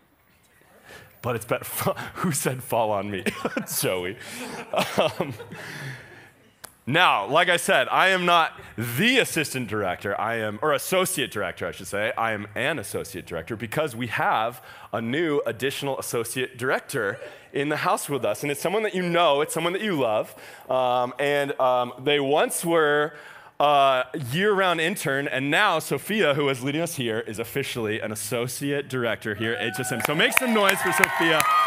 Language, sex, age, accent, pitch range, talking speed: English, male, 30-49, American, 115-160 Hz, 165 wpm